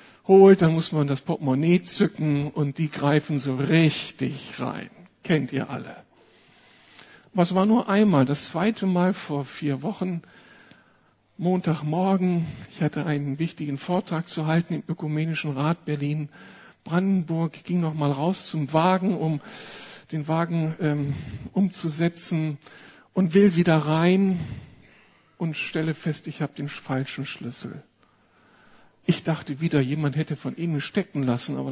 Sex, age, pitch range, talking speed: male, 60-79, 145-185 Hz, 135 wpm